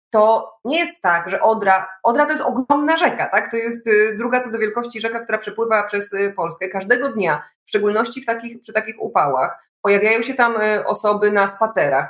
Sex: female